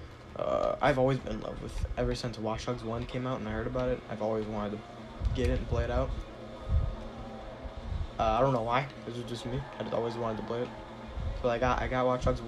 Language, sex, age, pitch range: English, male, 20-39, 110-130 Hz